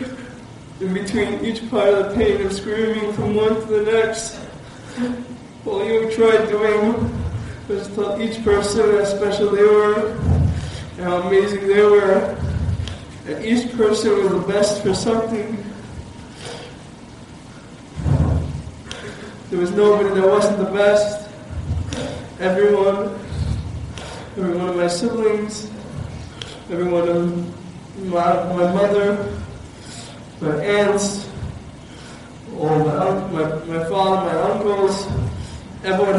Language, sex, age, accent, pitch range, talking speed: English, male, 20-39, American, 185-210 Hz, 110 wpm